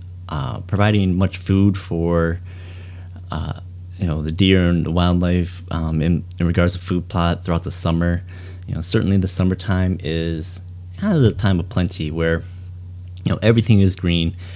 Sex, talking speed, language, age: male, 170 wpm, English, 30-49